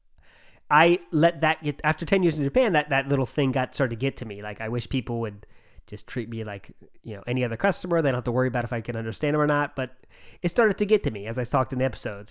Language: English